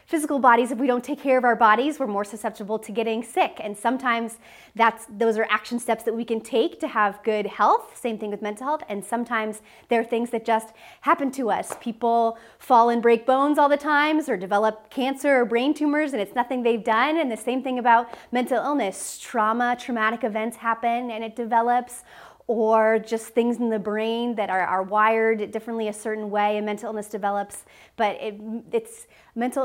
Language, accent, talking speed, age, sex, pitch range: English, American, 205 wpm, 30-49, female, 210-245 Hz